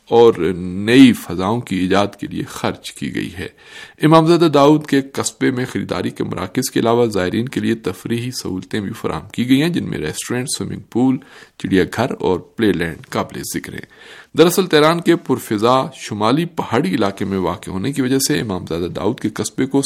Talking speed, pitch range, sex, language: 185 wpm, 100-140 Hz, male, Urdu